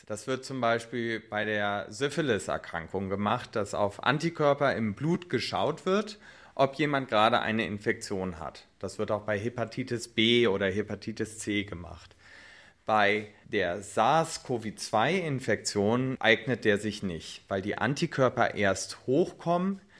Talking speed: 130 wpm